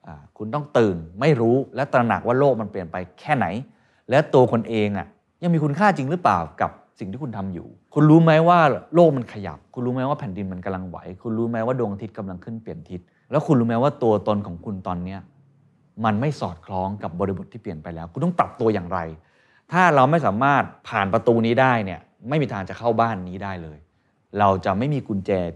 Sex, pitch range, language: male, 95-135 Hz, Thai